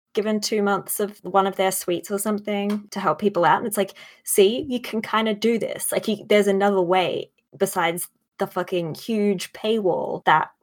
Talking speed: 190 wpm